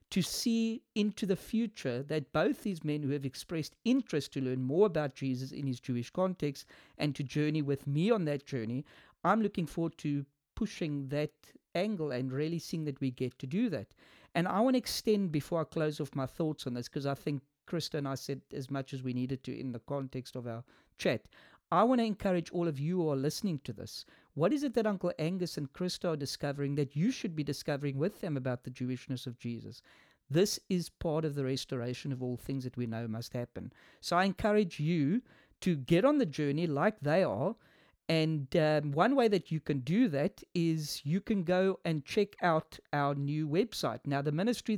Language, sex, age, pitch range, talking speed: English, male, 40-59, 135-175 Hz, 215 wpm